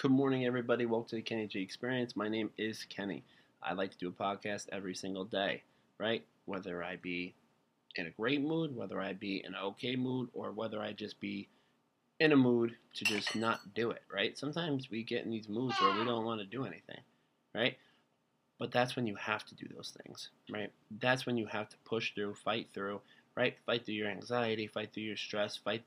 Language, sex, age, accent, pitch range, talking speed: English, male, 20-39, American, 100-125 Hz, 220 wpm